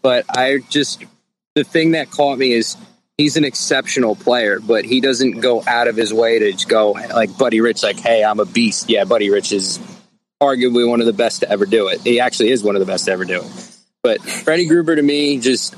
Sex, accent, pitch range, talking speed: male, American, 110-135 Hz, 235 wpm